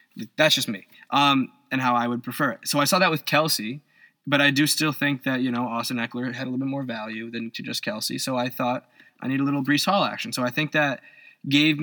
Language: English